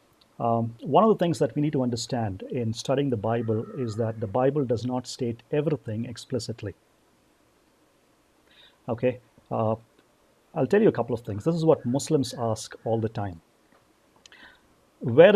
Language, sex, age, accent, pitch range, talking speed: English, male, 50-69, Indian, 115-145 Hz, 160 wpm